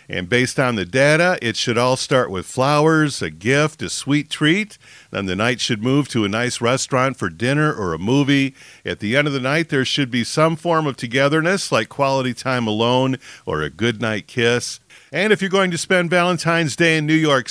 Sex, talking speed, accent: male, 215 wpm, American